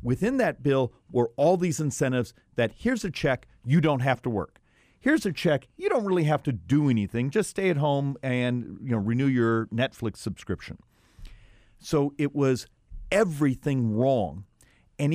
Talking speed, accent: 170 wpm, American